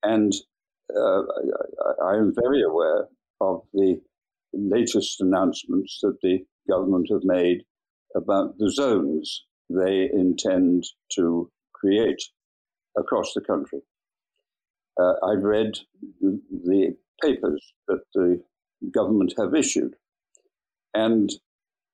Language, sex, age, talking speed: English, male, 60-79, 100 wpm